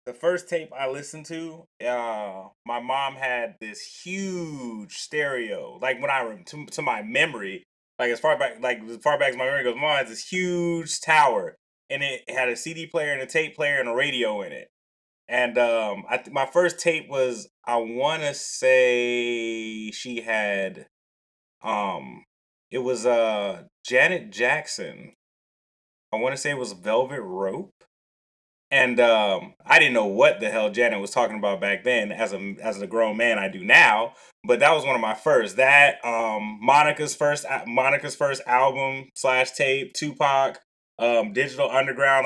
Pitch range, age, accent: 115-150 Hz, 20-39, American